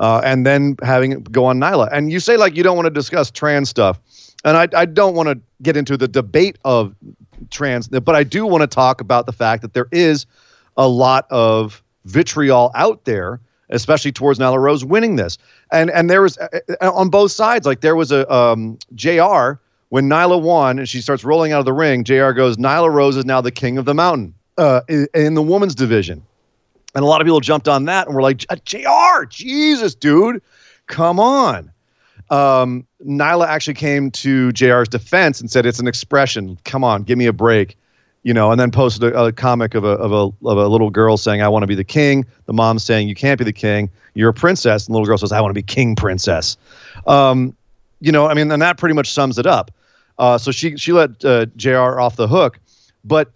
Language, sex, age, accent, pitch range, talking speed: English, male, 40-59, American, 120-155 Hz, 220 wpm